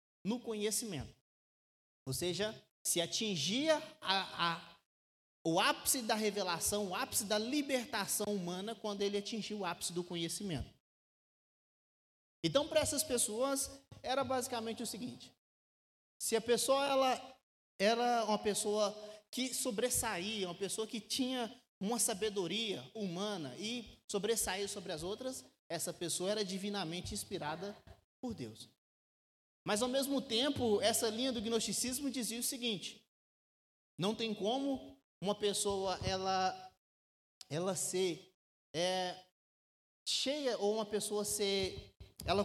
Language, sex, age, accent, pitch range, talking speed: Portuguese, male, 20-39, Brazilian, 185-240 Hz, 120 wpm